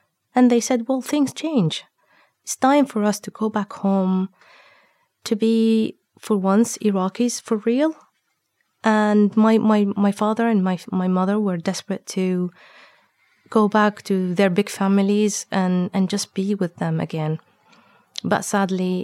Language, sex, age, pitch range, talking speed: English, female, 30-49, 180-210 Hz, 150 wpm